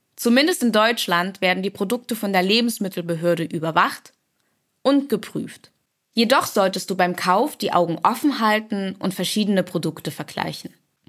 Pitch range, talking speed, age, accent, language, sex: 180-235 Hz, 135 wpm, 10-29, German, German, female